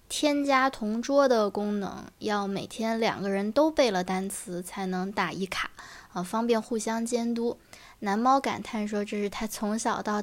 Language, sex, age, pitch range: Chinese, female, 20-39, 195-245 Hz